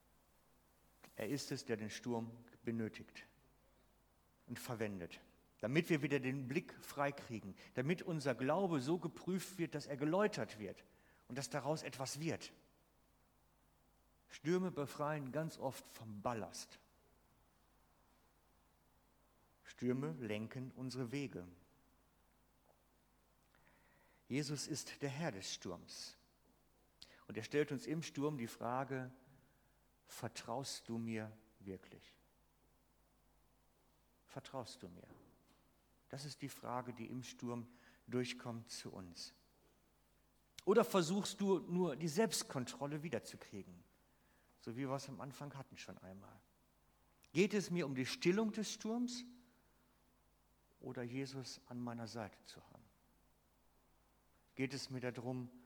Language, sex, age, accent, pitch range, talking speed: German, male, 50-69, German, 110-145 Hz, 115 wpm